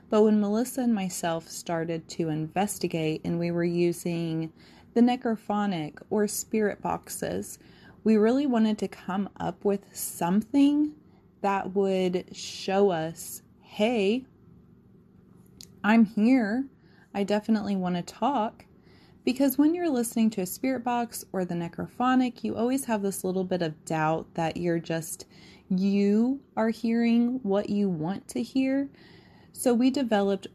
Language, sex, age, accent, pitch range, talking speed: English, female, 20-39, American, 175-225 Hz, 140 wpm